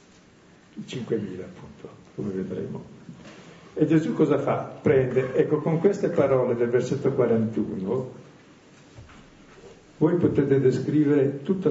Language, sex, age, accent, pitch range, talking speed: Italian, male, 50-69, native, 110-150 Hz, 100 wpm